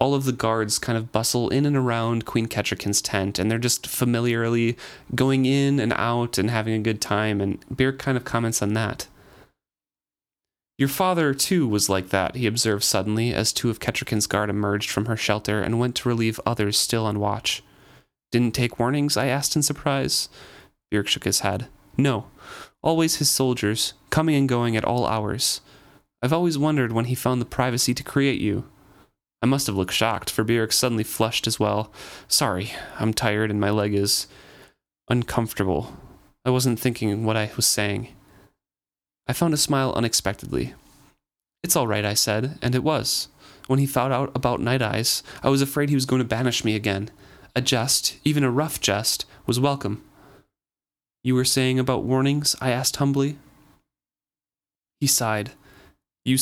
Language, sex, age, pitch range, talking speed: English, male, 30-49, 110-135 Hz, 175 wpm